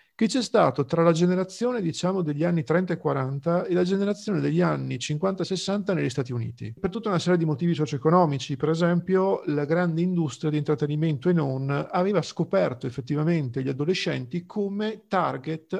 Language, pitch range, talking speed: Italian, 145-185 Hz, 175 wpm